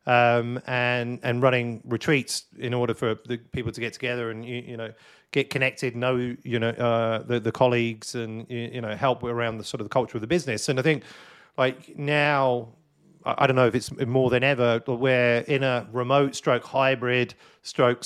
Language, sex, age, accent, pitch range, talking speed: English, male, 40-59, British, 115-135 Hz, 205 wpm